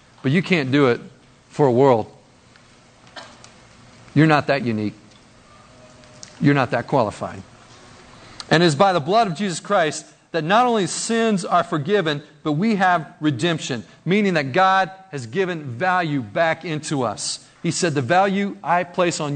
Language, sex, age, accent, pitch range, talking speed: English, male, 40-59, American, 125-165 Hz, 155 wpm